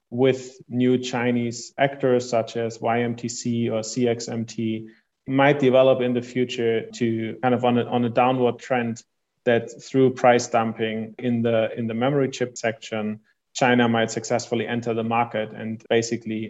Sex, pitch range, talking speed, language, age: male, 115-125 Hz, 155 wpm, English, 30-49